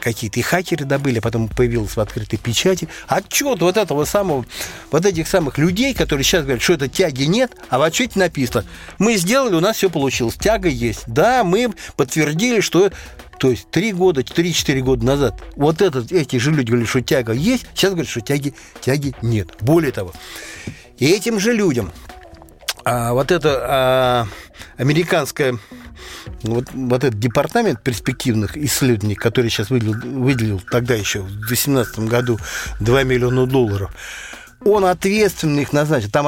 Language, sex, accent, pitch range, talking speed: Russian, male, native, 120-160 Hz, 160 wpm